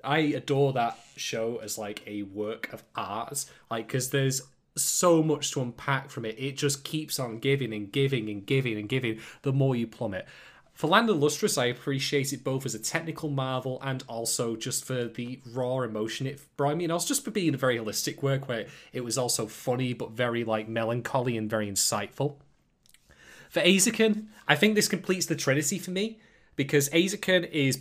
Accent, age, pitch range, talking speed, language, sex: British, 20-39, 125-165 Hz, 195 wpm, English, male